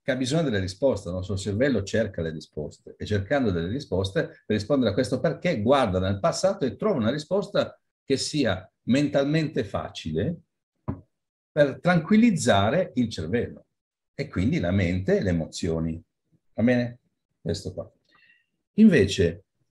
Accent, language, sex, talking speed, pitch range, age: native, Italian, male, 145 wpm, 90-145 Hz, 50-69